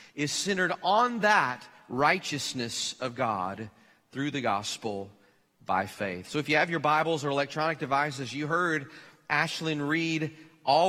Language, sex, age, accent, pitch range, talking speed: English, male, 40-59, American, 140-180 Hz, 145 wpm